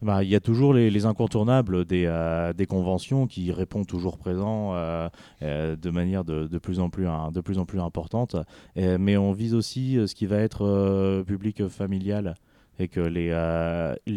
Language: French